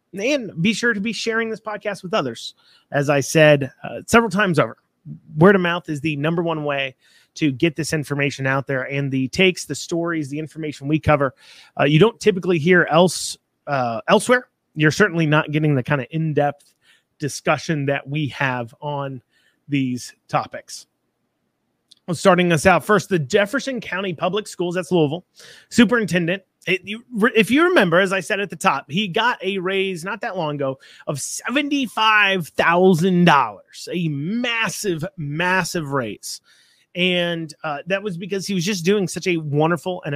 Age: 30-49